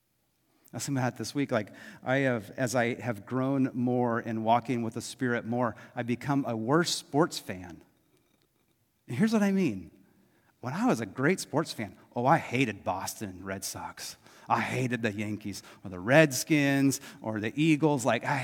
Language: English